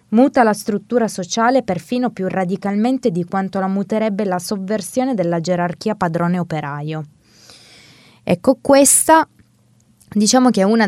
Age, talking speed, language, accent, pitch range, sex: 20-39, 125 wpm, Italian, native, 175-230 Hz, female